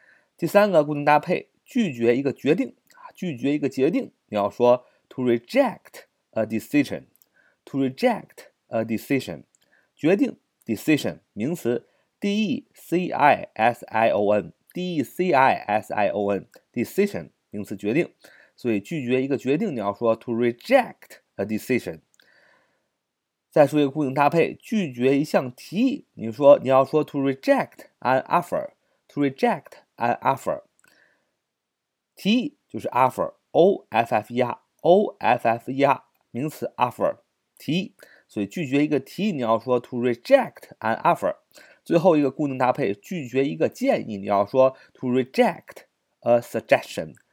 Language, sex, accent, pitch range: Chinese, male, native, 120-180 Hz